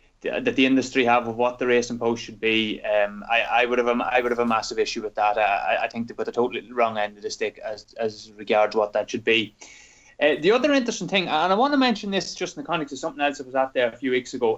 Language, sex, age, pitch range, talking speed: English, male, 20-39, 120-155 Hz, 295 wpm